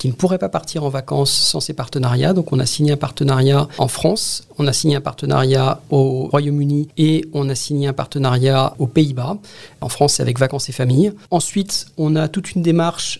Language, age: French, 40-59